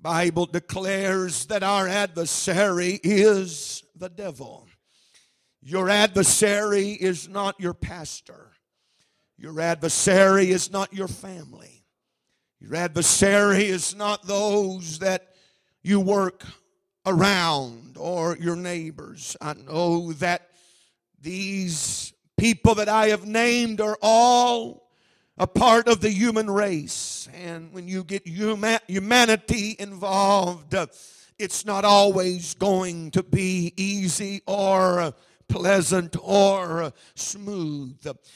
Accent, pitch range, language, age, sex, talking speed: American, 175-205 Hz, English, 50-69, male, 105 wpm